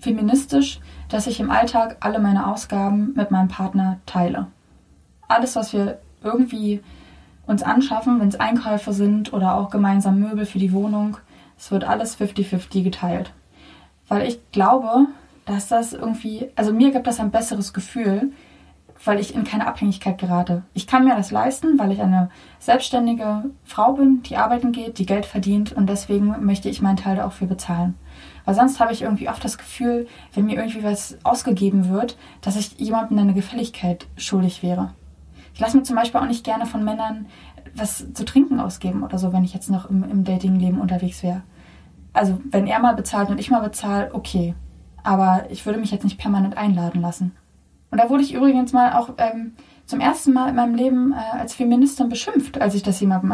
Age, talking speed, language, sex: 20-39, 185 wpm, German, female